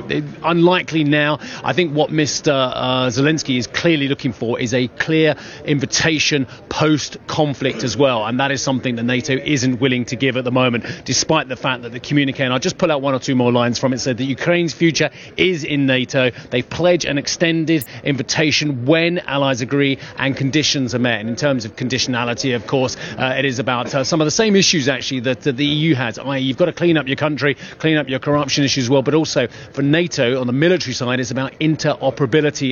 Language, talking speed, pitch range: English, 215 wpm, 125-150 Hz